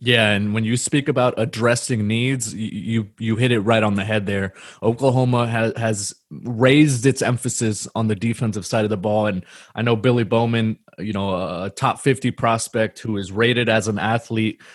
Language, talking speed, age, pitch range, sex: English, 195 wpm, 20-39, 105-120 Hz, male